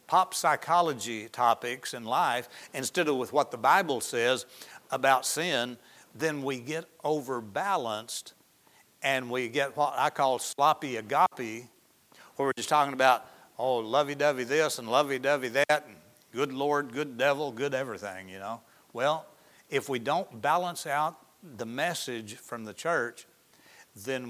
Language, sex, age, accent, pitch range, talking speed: English, male, 60-79, American, 125-155 Hz, 150 wpm